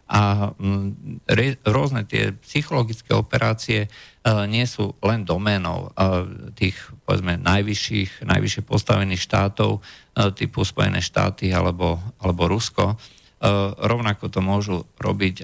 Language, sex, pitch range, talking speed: Slovak, male, 95-115 Hz, 115 wpm